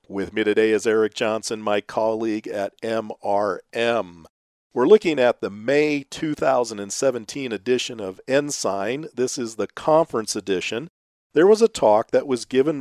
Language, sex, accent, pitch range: English, male, American, 115-185 Hz